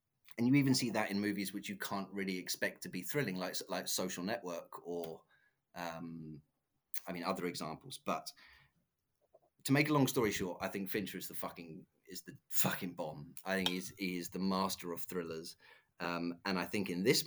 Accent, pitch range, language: British, 90-110 Hz, English